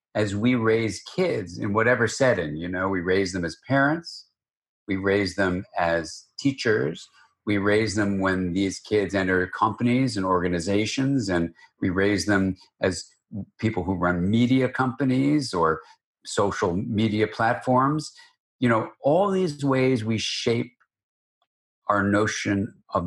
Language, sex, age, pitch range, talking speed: English, male, 50-69, 100-130 Hz, 140 wpm